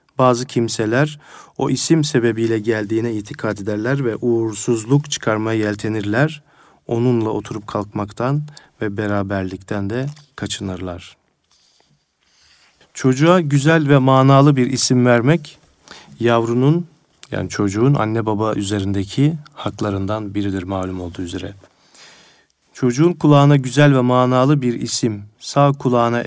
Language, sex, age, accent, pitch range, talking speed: Turkish, male, 40-59, native, 105-130 Hz, 105 wpm